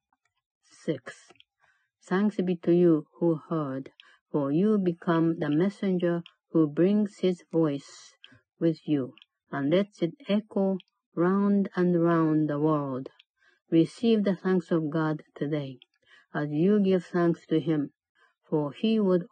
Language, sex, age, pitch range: Japanese, female, 50-69, 155-185 Hz